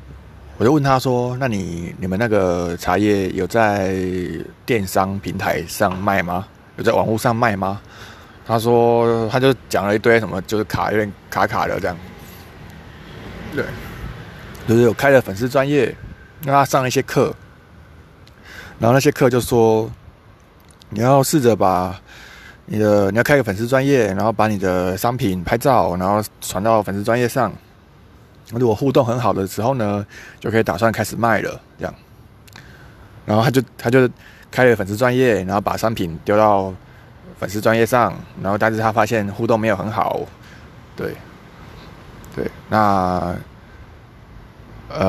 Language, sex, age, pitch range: Chinese, male, 20-39, 95-120 Hz